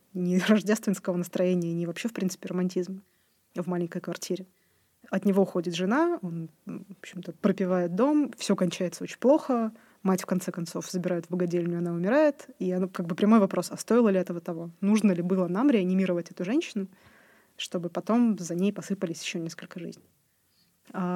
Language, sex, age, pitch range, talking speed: Russian, female, 20-39, 180-215 Hz, 165 wpm